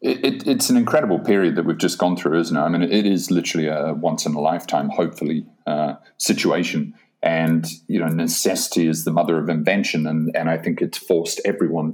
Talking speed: 190 wpm